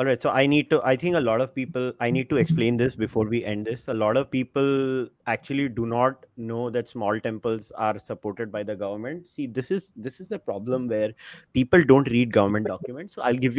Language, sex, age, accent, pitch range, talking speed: English, male, 30-49, Indian, 120-170 Hz, 235 wpm